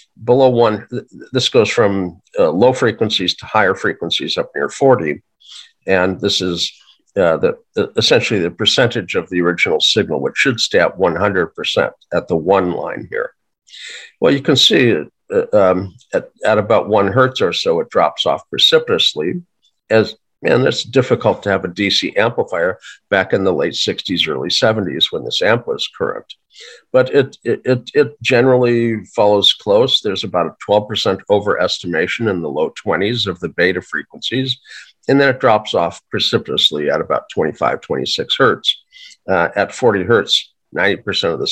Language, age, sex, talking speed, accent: English, 50-69, male, 165 wpm, American